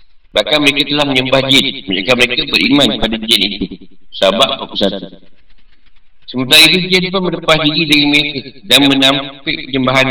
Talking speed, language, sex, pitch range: 130 wpm, Malay, male, 105-135 Hz